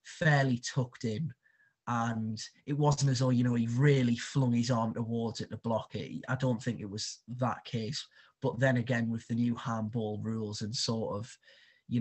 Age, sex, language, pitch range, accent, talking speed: 20-39, male, English, 110-130 Hz, British, 195 wpm